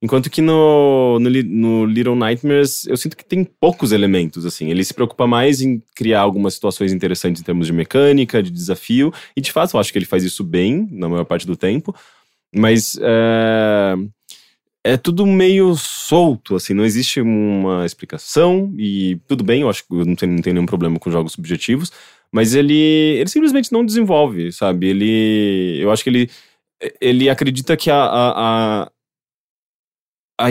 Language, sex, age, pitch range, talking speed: English, male, 20-39, 100-150 Hz, 175 wpm